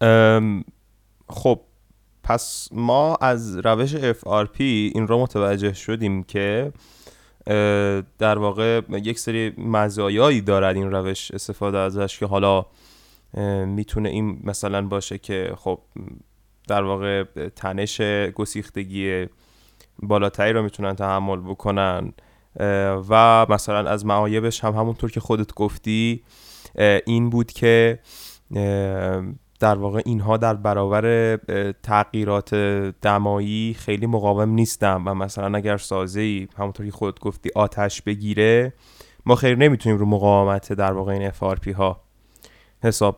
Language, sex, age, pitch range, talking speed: Persian, male, 20-39, 100-115 Hz, 115 wpm